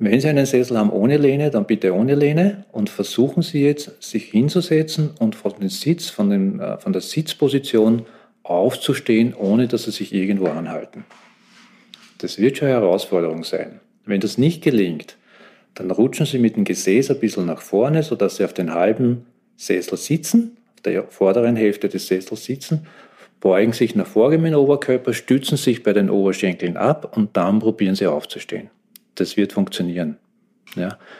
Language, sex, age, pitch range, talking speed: German, male, 40-59, 105-145 Hz, 170 wpm